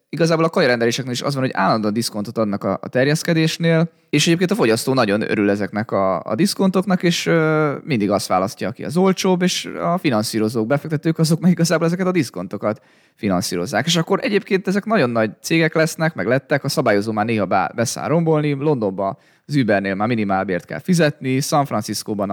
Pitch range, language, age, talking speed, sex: 110-155 Hz, Hungarian, 20-39, 180 wpm, male